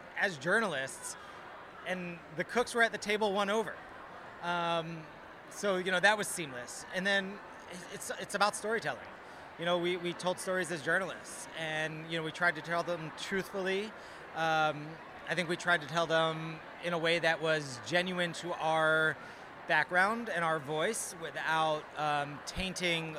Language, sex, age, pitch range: English, male, 30-49, 155-180 Hz